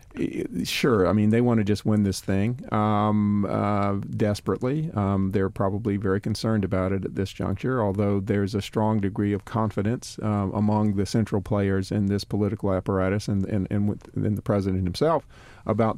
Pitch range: 100-115 Hz